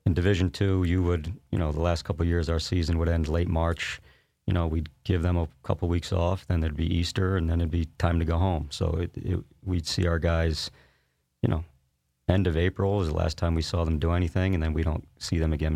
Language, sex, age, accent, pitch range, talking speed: English, male, 40-59, American, 80-90 Hz, 260 wpm